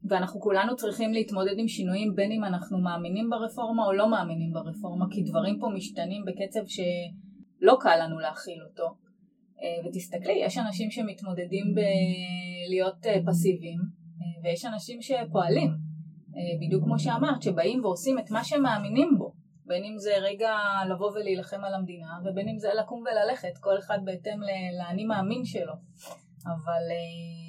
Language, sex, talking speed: Hebrew, female, 140 wpm